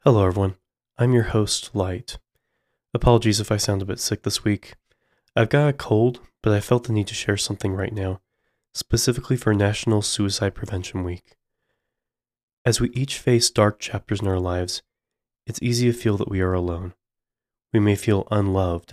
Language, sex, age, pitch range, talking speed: English, male, 20-39, 95-115 Hz, 180 wpm